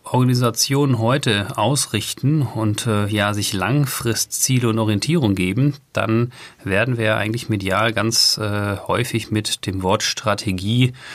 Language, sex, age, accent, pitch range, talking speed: German, male, 40-59, German, 100-120 Hz, 120 wpm